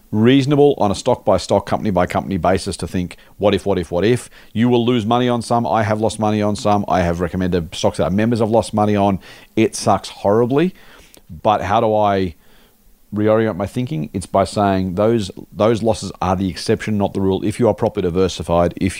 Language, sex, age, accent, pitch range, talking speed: English, male, 40-59, Australian, 90-110 Hz, 215 wpm